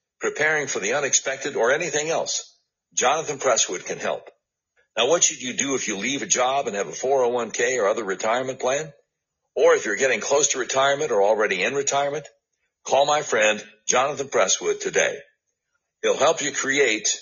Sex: male